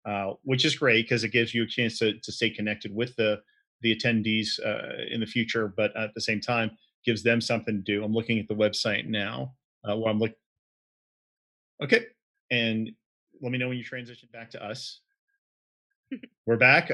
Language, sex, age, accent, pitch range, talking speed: English, male, 30-49, American, 110-135 Hz, 190 wpm